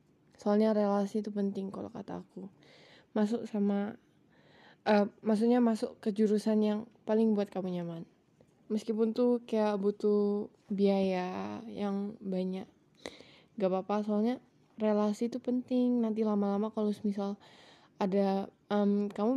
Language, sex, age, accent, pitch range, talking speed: Indonesian, female, 10-29, native, 195-225 Hz, 120 wpm